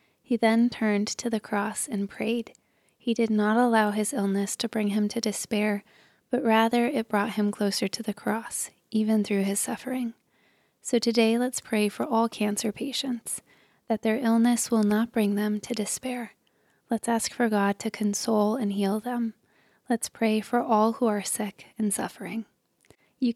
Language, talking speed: English, 175 wpm